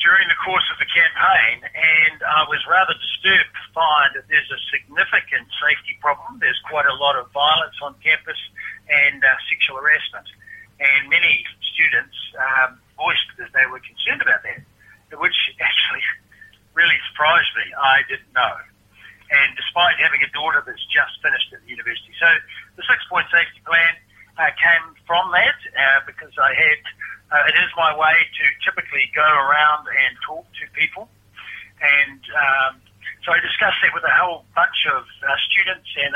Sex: male